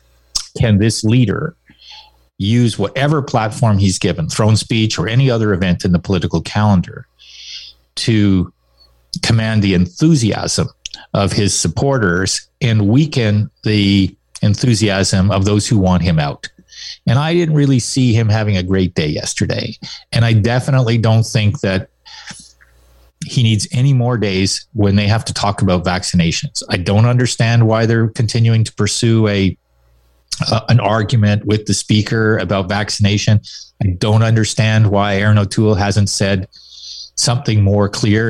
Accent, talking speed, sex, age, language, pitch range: American, 145 wpm, male, 30-49, English, 95-120 Hz